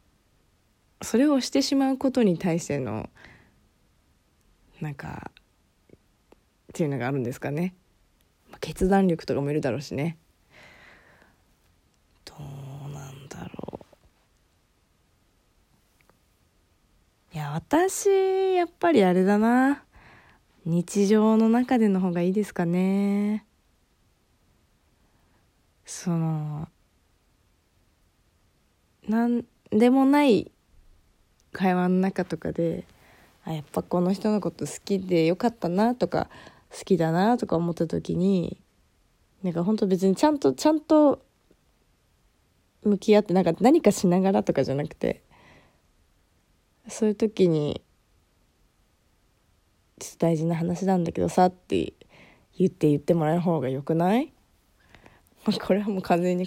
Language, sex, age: Japanese, female, 20-39